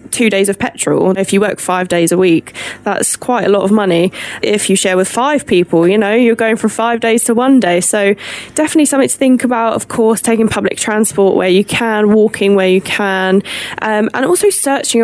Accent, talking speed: British, 220 wpm